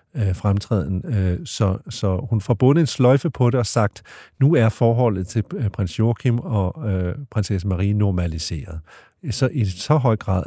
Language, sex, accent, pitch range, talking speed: Danish, male, native, 90-115 Hz, 150 wpm